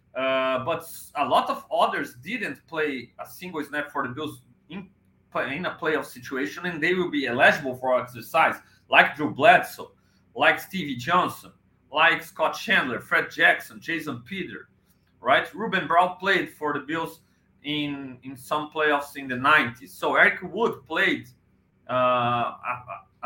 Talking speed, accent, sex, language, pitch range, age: 150 wpm, Brazilian, male, English, 135-175 Hz, 40-59